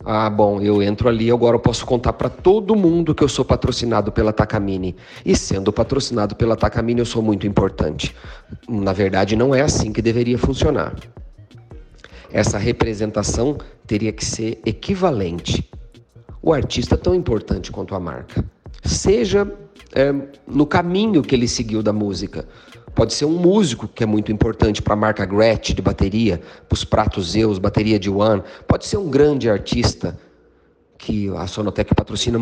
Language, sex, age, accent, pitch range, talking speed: Portuguese, male, 40-59, Brazilian, 105-120 Hz, 165 wpm